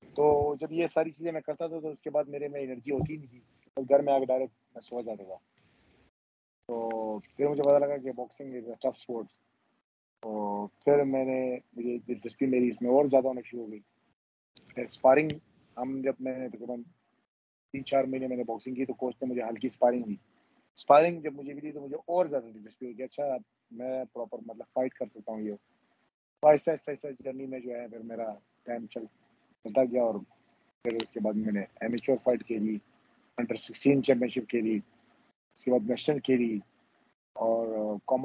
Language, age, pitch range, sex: Urdu, 30-49, 115-135 Hz, male